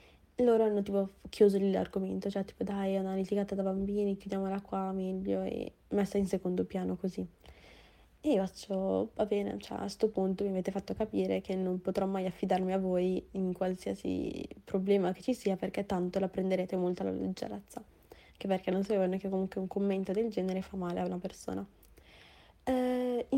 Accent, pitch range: native, 185-205 Hz